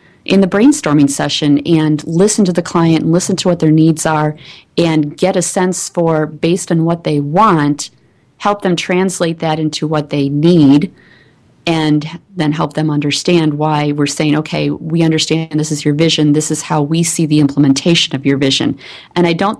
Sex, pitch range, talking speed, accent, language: female, 150-170 Hz, 185 wpm, American, English